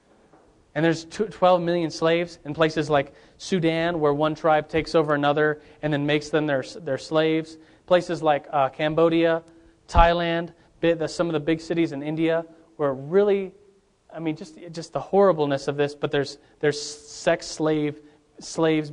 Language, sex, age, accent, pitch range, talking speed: English, male, 30-49, American, 140-165 Hz, 160 wpm